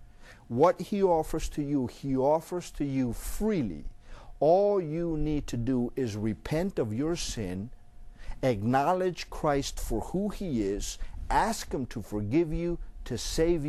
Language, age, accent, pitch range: English, 50-69, American, 115-160 Hz